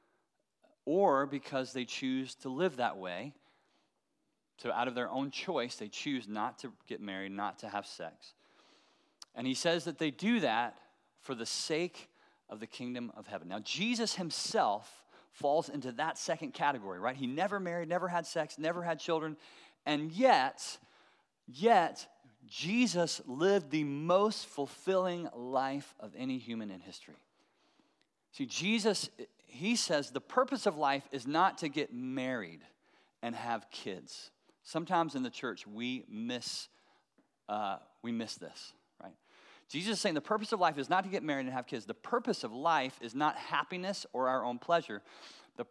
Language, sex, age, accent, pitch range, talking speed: English, male, 30-49, American, 125-180 Hz, 165 wpm